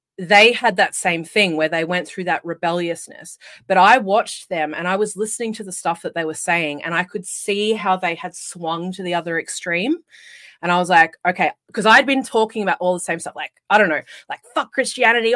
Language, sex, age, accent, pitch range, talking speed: English, female, 30-49, Australian, 170-220 Hz, 230 wpm